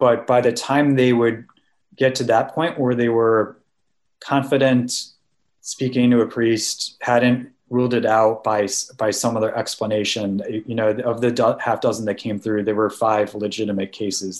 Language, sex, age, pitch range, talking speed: English, male, 20-39, 105-125 Hz, 170 wpm